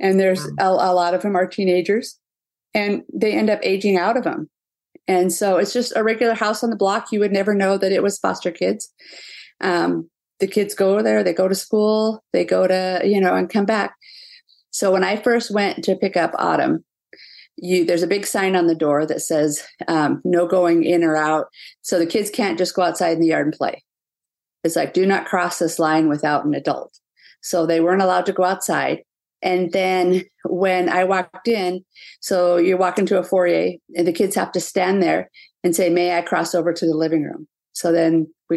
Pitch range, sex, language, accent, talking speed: 170-195 Hz, female, English, American, 215 wpm